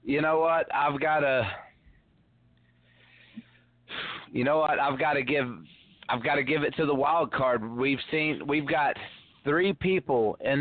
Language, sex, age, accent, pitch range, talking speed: English, male, 30-49, American, 105-140 Hz, 165 wpm